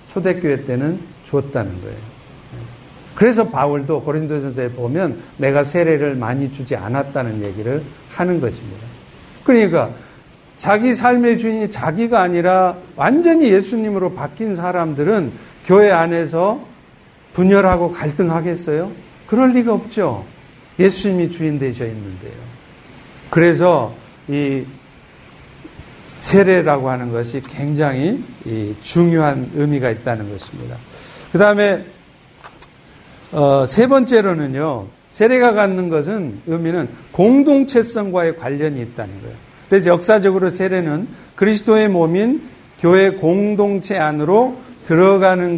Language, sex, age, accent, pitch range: Korean, male, 50-69, native, 135-195 Hz